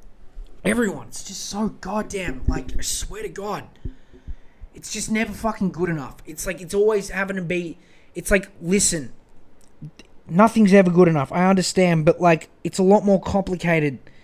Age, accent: 20-39, Australian